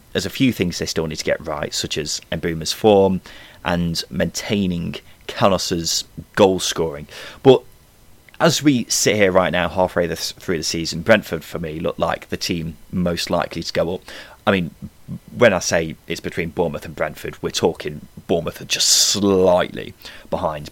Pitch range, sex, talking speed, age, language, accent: 90-135 Hz, male, 170 wpm, 30-49, English, British